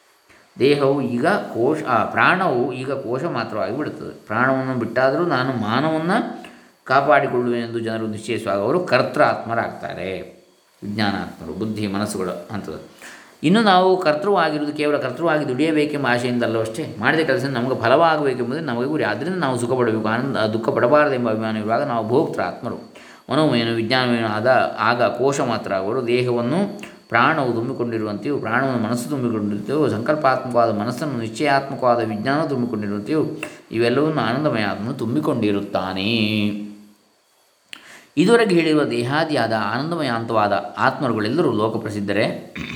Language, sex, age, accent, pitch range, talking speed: Kannada, male, 20-39, native, 110-135 Hz, 100 wpm